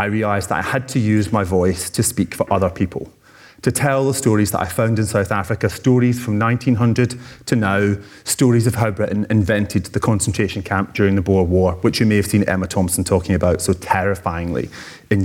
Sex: male